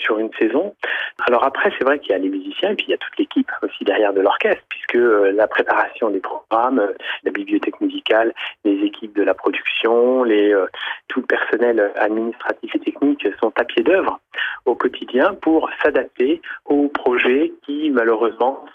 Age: 30-49